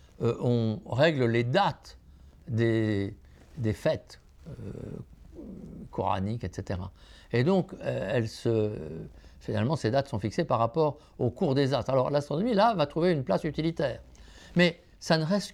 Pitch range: 90-145 Hz